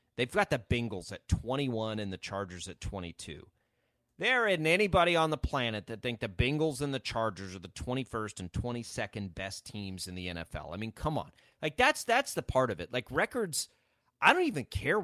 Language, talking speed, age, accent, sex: English, 205 wpm, 30-49, American, male